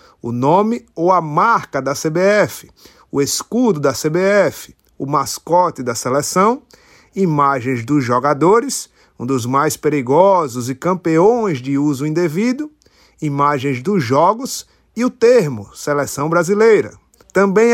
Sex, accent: male, Brazilian